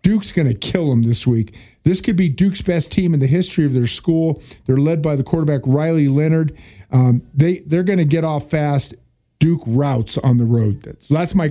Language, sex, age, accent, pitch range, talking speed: English, male, 50-69, American, 130-165 Hz, 225 wpm